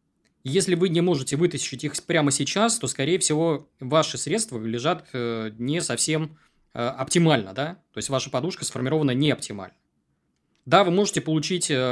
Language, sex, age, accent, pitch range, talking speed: Russian, male, 20-39, native, 125-160 Hz, 145 wpm